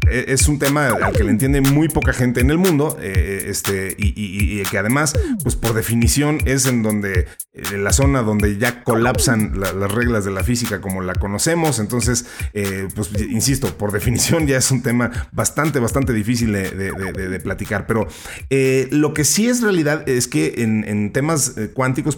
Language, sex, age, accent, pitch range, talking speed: Spanish, male, 30-49, Mexican, 105-145 Hz, 195 wpm